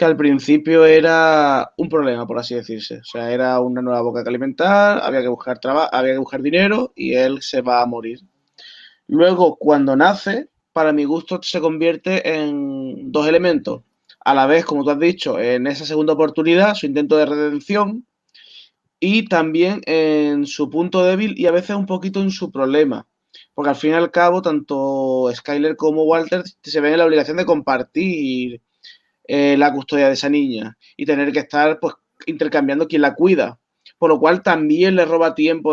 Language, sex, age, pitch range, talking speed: Spanish, male, 20-39, 145-175 Hz, 185 wpm